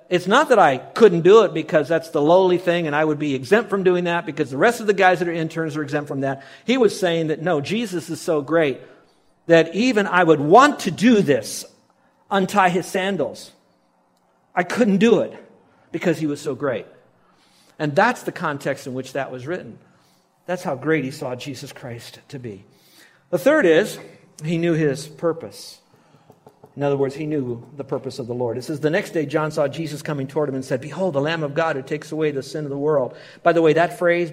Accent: American